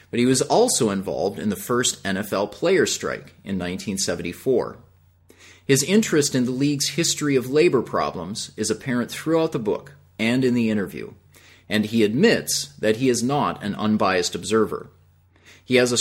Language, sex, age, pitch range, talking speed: English, male, 30-49, 95-135 Hz, 165 wpm